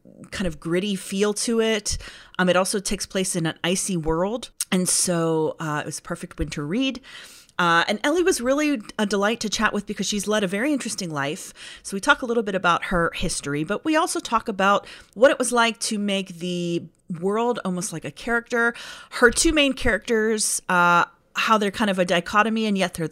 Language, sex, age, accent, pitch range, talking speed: English, female, 30-49, American, 170-215 Hz, 210 wpm